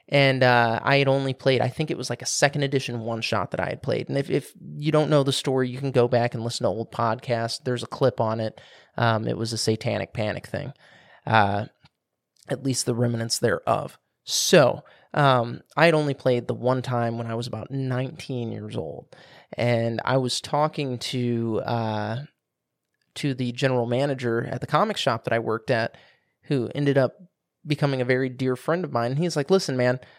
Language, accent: English, American